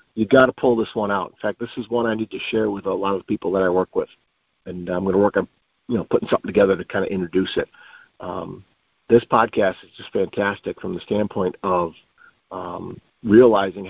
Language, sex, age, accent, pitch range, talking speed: English, male, 50-69, American, 105-165 Hz, 230 wpm